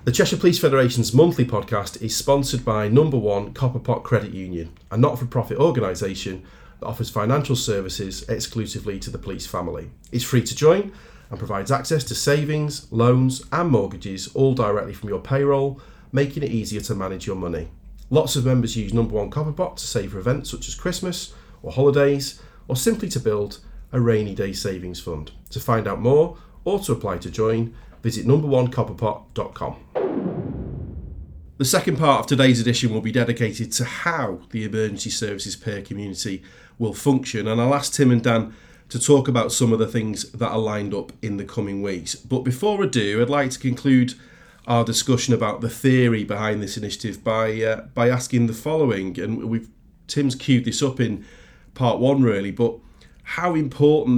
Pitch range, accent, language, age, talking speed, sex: 105-135 Hz, British, English, 40-59, 175 wpm, male